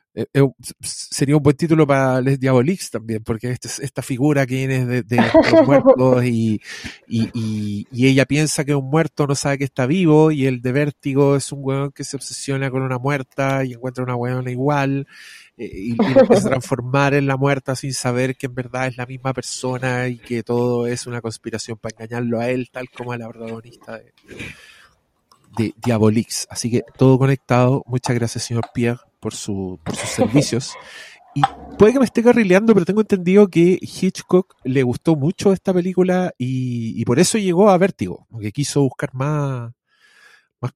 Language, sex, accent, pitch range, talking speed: Spanish, male, Argentinian, 120-150 Hz, 190 wpm